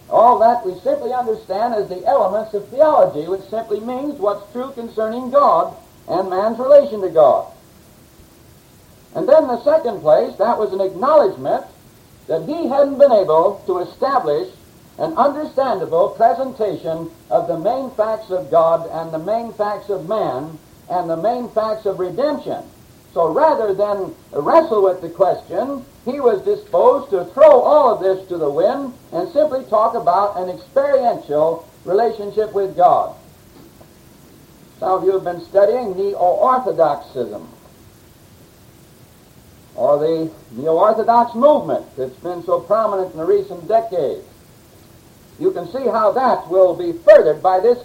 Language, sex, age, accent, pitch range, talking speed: English, male, 60-79, American, 190-295 Hz, 145 wpm